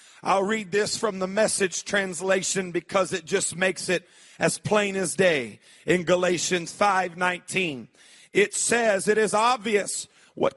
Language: English